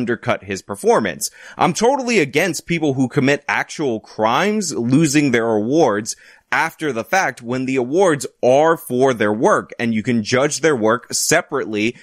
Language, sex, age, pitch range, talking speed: English, male, 20-39, 115-160 Hz, 155 wpm